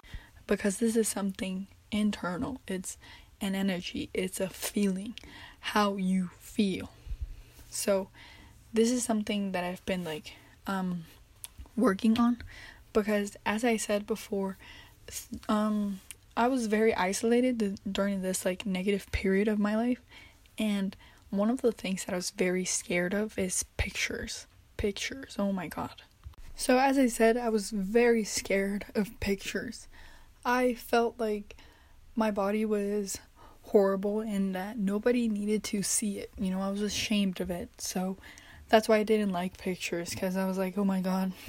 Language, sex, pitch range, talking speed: English, female, 190-220 Hz, 150 wpm